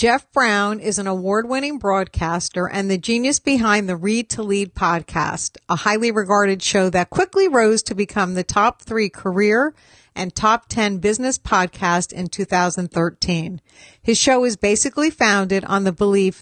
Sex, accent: female, American